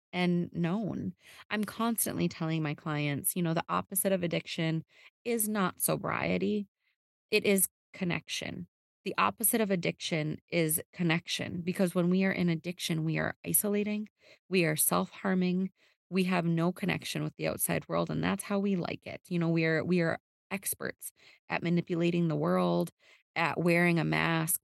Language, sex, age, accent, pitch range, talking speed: English, female, 20-39, American, 160-180 Hz, 160 wpm